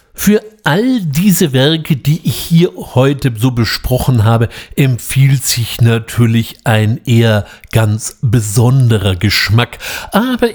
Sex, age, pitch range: male, 60-79, 115-160 Hz